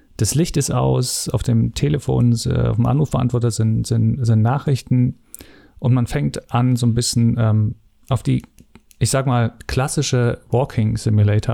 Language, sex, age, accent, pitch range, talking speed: German, male, 40-59, German, 110-125 Hz, 155 wpm